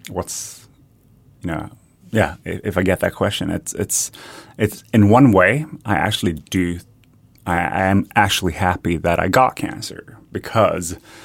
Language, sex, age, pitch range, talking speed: English, male, 30-49, 85-105 Hz, 150 wpm